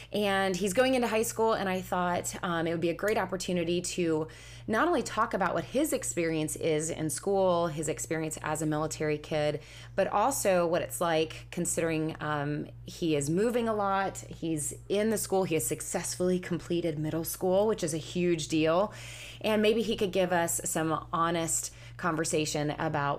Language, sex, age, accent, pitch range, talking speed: English, female, 20-39, American, 150-180 Hz, 180 wpm